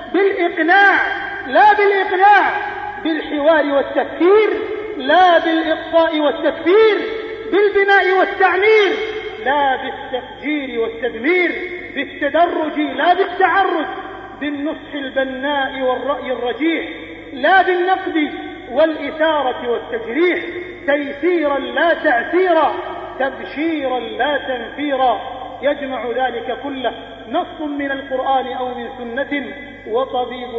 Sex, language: male, Arabic